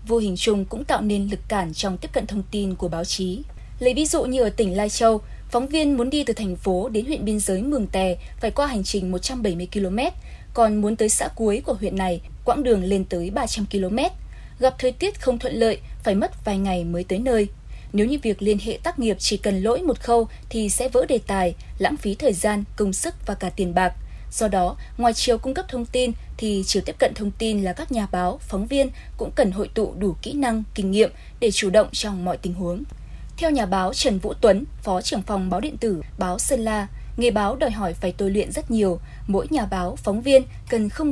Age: 20-39